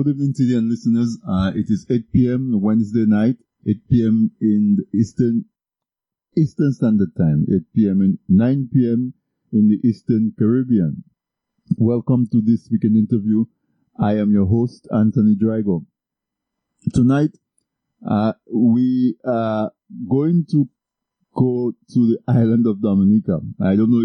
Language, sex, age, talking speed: English, male, 50-69, 135 wpm